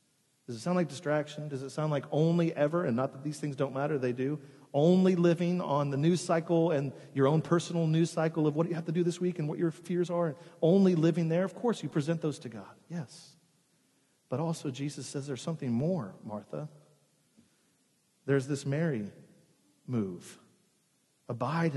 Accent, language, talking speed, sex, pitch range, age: American, English, 195 wpm, male, 140-190 Hz, 40-59